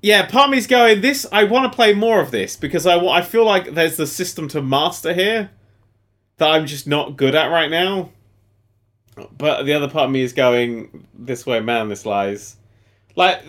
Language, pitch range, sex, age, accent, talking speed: English, 115-185 Hz, male, 30-49, British, 210 wpm